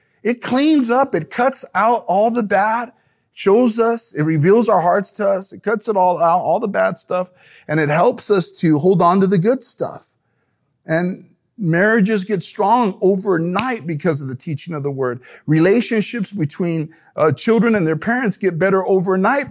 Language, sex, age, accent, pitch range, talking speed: English, male, 40-59, American, 145-200 Hz, 180 wpm